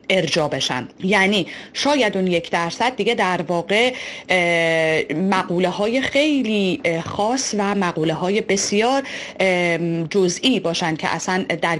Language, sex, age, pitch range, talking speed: Persian, female, 30-49, 170-245 Hz, 115 wpm